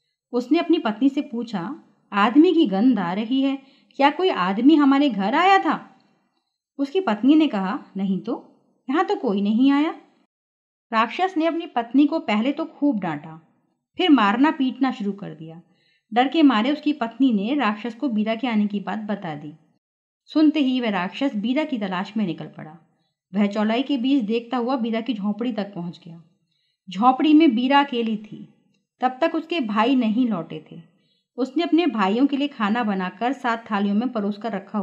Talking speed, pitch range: 180 wpm, 200-275 Hz